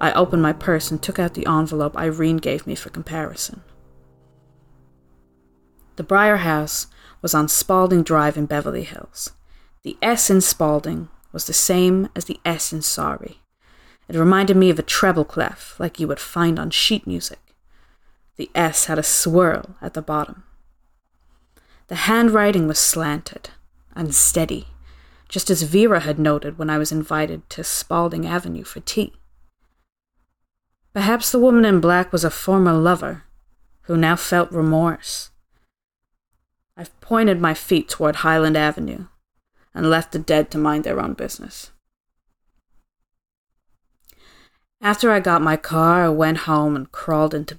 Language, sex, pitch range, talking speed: English, female, 145-180 Hz, 150 wpm